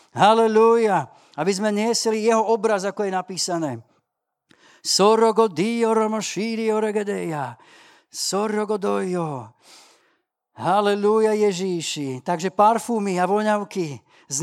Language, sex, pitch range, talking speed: Slovak, male, 145-195 Hz, 65 wpm